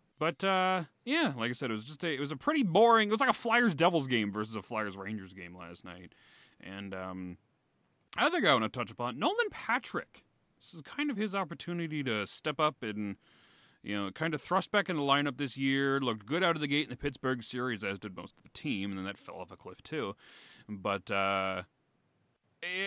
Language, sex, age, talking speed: English, male, 30-49, 225 wpm